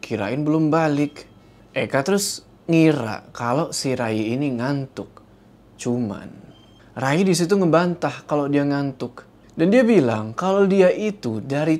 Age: 20-39